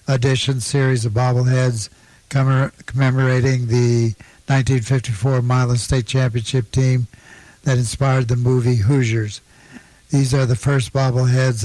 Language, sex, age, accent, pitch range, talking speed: English, male, 60-79, American, 125-135 Hz, 110 wpm